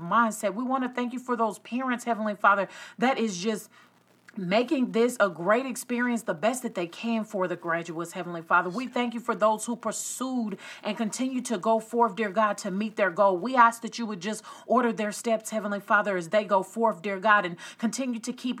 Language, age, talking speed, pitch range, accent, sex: English, 40-59, 220 wpm, 210-245 Hz, American, female